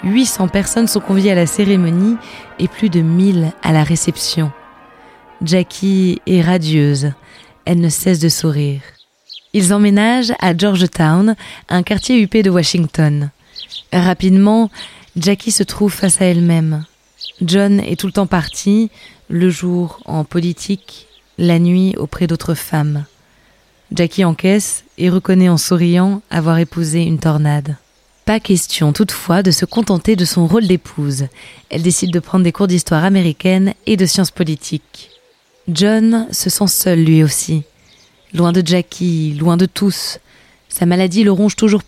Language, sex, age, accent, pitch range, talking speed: French, female, 20-39, French, 160-195 Hz, 145 wpm